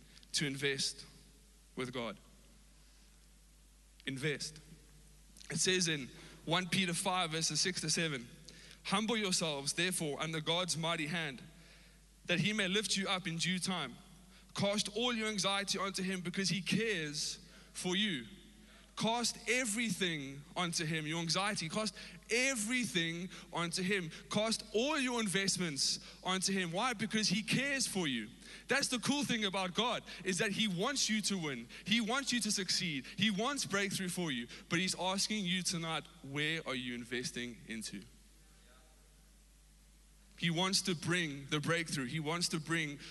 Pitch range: 165-210 Hz